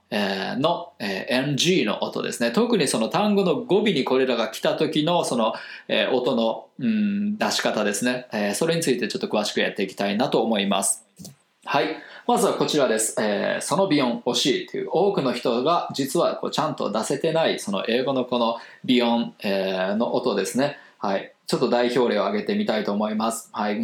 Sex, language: male, Japanese